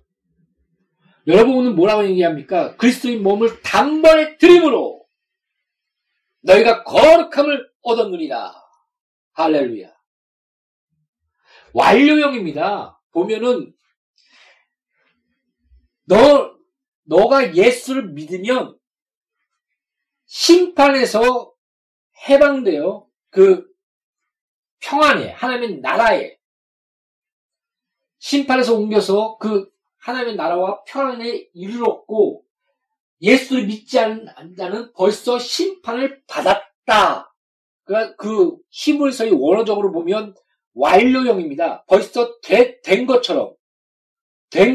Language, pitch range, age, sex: Korean, 200-300 Hz, 40-59, male